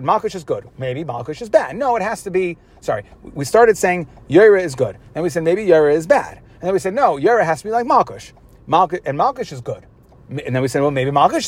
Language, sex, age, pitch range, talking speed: English, male, 30-49, 155-230 Hz, 255 wpm